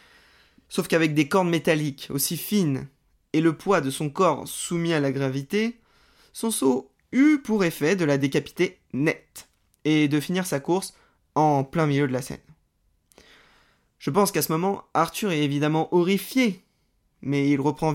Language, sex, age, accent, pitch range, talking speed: French, male, 20-39, French, 140-185 Hz, 165 wpm